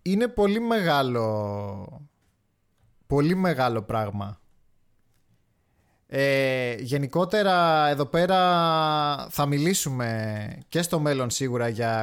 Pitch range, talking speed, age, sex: 110-160 Hz, 85 wpm, 20-39, male